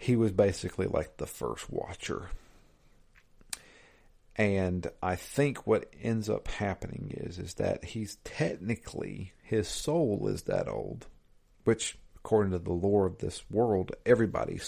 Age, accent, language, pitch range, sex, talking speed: 50-69, American, English, 85-105 Hz, male, 135 wpm